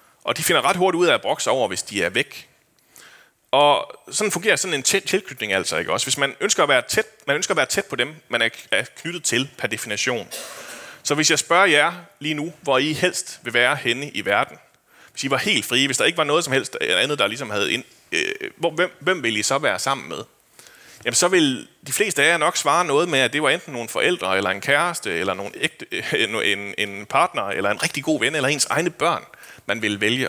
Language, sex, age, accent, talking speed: Danish, male, 30-49, native, 240 wpm